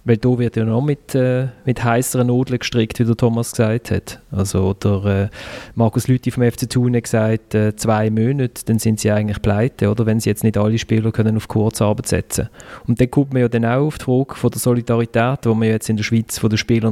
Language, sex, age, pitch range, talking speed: German, male, 30-49, 110-125 Hz, 240 wpm